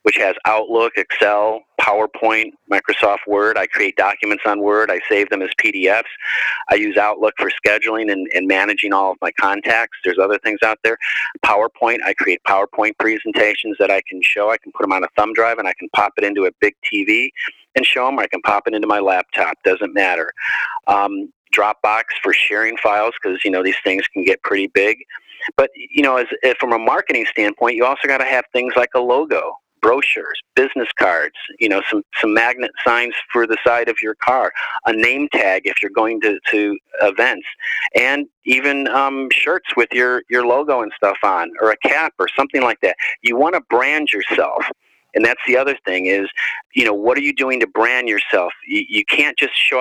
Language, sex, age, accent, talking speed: English, male, 40-59, American, 205 wpm